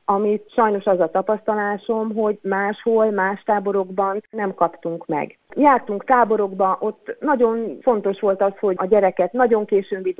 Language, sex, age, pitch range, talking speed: Hungarian, female, 30-49, 170-215 Hz, 145 wpm